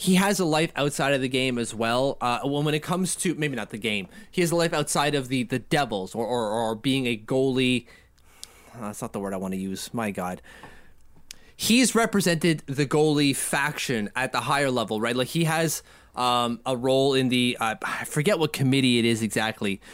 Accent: American